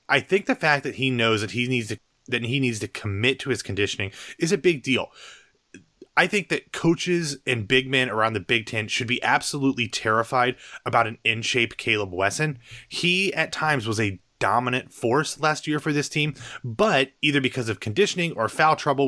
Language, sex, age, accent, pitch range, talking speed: English, male, 30-49, American, 110-140 Hz, 200 wpm